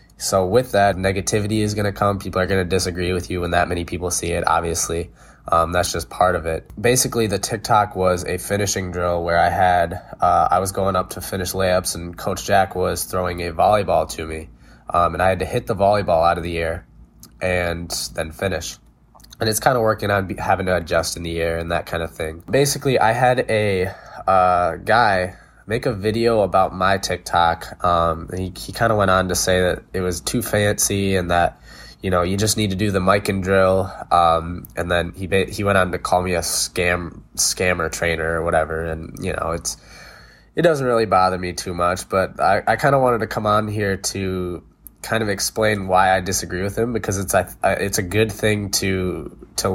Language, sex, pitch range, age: English, male, 85-100 Hz, 20-39